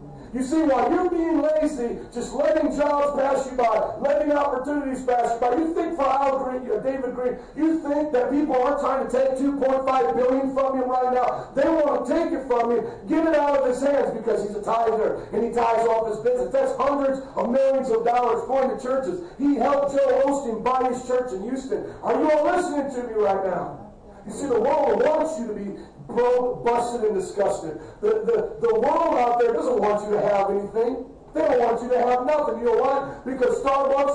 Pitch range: 230-280 Hz